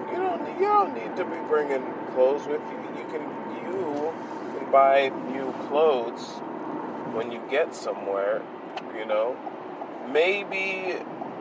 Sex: male